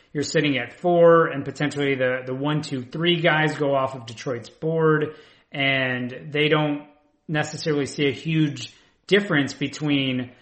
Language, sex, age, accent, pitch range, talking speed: English, male, 30-49, American, 130-150 Hz, 150 wpm